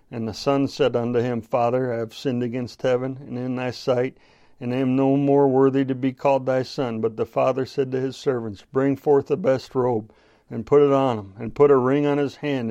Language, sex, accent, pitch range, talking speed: English, male, American, 115-145 Hz, 235 wpm